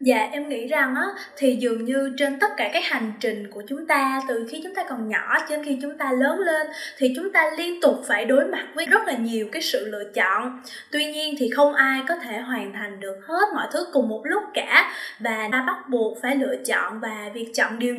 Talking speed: 240 wpm